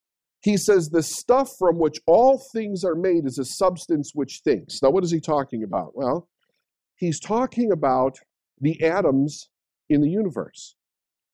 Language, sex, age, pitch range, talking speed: English, male, 50-69, 125-180 Hz, 160 wpm